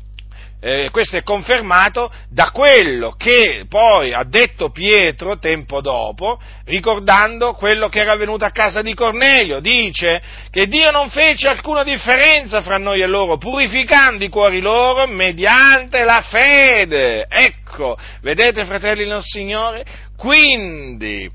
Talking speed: 130 wpm